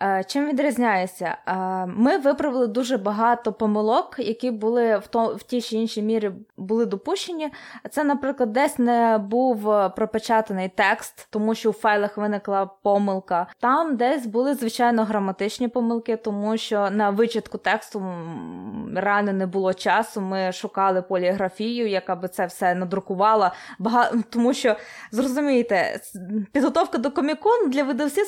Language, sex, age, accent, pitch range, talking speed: Ukrainian, female, 20-39, native, 210-260 Hz, 135 wpm